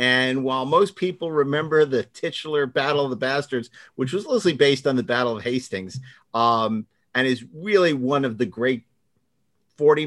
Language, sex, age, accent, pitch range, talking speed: English, male, 50-69, American, 125-155 Hz, 175 wpm